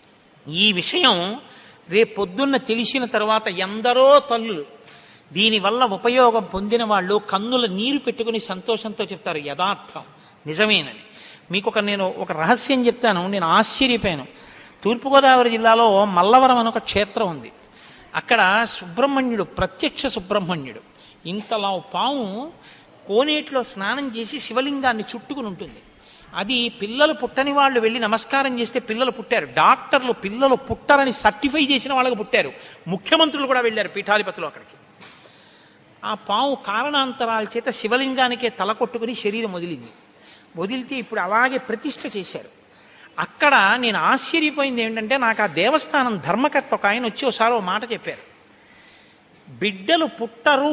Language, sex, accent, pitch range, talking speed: Telugu, male, native, 205-260 Hz, 110 wpm